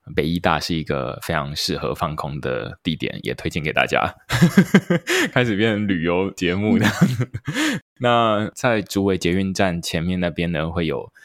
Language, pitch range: Chinese, 80-95 Hz